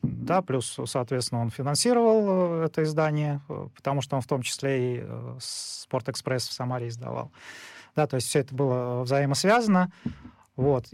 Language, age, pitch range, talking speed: Russian, 30-49, 125-160 Hz, 145 wpm